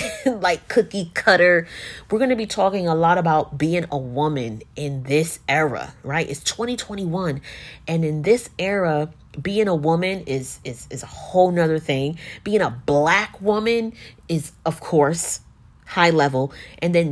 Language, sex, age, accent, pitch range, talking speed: English, female, 30-49, American, 150-200 Hz, 160 wpm